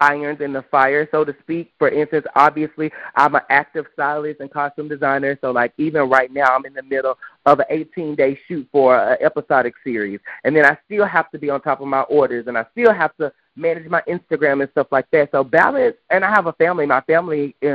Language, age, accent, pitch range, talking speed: English, 30-49, American, 140-170 Hz, 230 wpm